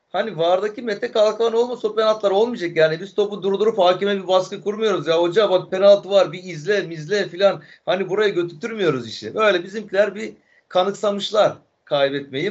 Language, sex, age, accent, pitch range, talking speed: Turkish, male, 40-59, native, 140-195 Hz, 165 wpm